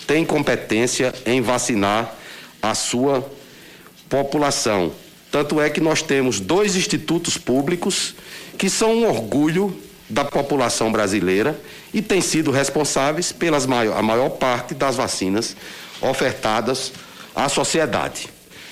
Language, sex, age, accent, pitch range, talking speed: Portuguese, male, 60-79, Brazilian, 115-170 Hz, 110 wpm